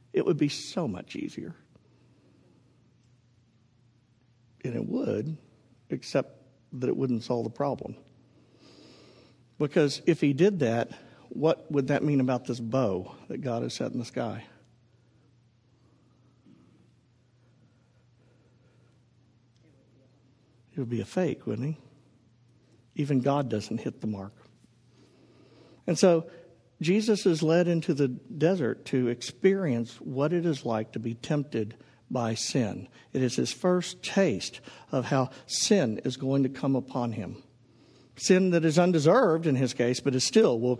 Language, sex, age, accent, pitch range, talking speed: English, male, 50-69, American, 120-165 Hz, 135 wpm